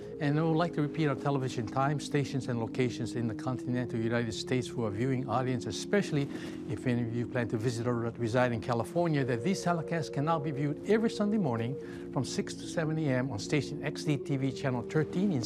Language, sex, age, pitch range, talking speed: English, male, 60-79, 130-170 Hz, 210 wpm